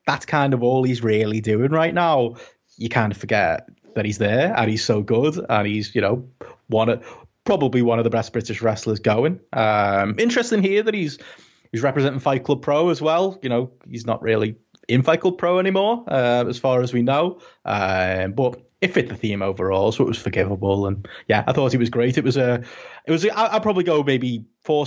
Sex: male